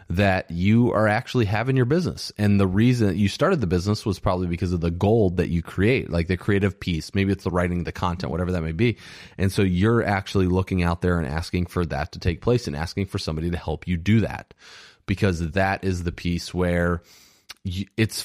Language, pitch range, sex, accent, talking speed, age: English, 90-115 Hz, male, American, 220 wpm, 30-49